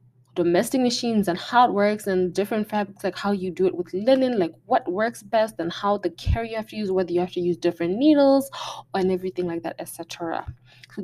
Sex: female